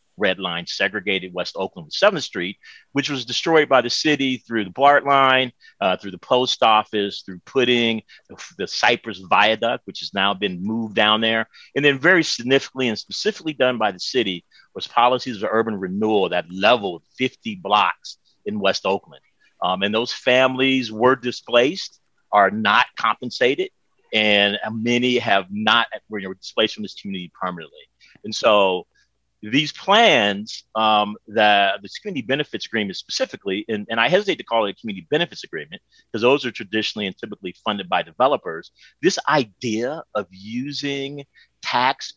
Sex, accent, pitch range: male, American, 100-130 Hz